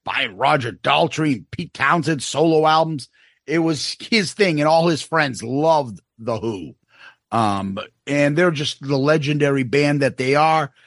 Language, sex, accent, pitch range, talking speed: English, male, American, 130-165 Hz, 155 wpm